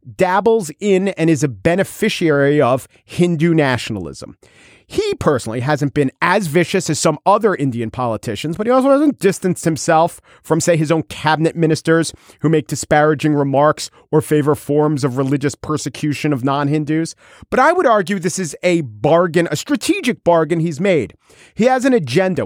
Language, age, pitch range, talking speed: English, 40-59, 145-190 Hz, 165 wpm